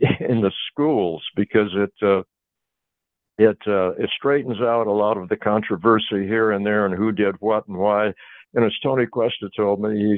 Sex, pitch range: male, 100-115 Hz